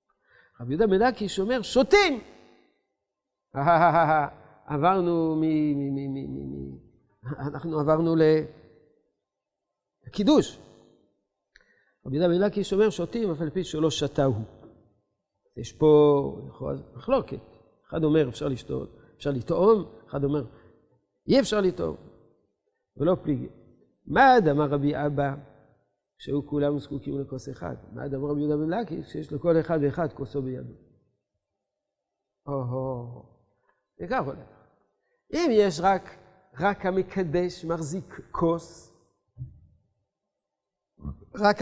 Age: 50-69